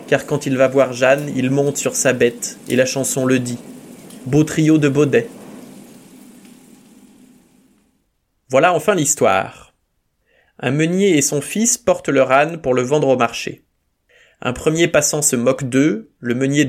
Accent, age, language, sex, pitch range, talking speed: French, 20-39, French, male, 130-160 Hz, 160 wpm